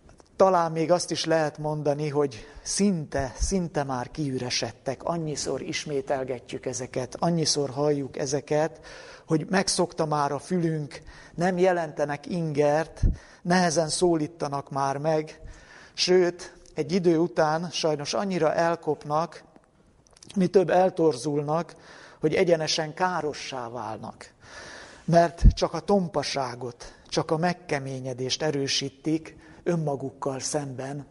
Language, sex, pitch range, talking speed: Hungarian, male, 135-170 Hz, 100 wpm